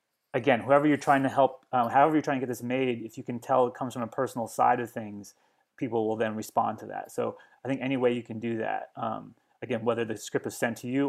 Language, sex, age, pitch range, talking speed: English, male, 30-49, 115-135 Hz, 270 wpm